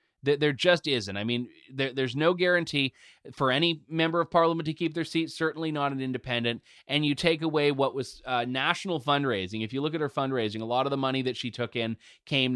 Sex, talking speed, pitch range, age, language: male, 225 wpm, 125-160 Hz, 20-39, English